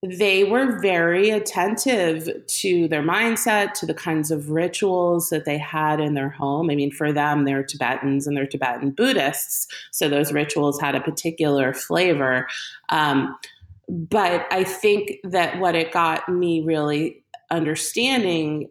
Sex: female